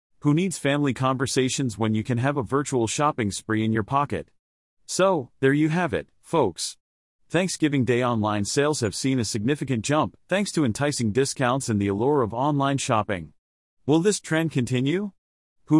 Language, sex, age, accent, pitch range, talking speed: English, male, 40-59, American, 110-150 Hz, 170 wpm